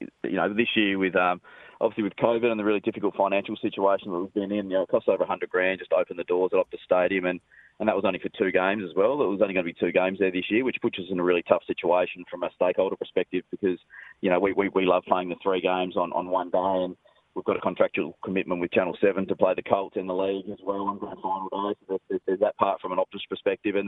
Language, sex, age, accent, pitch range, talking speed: English, male, 20-39, Australian, 95-100 Hz, 285 wpm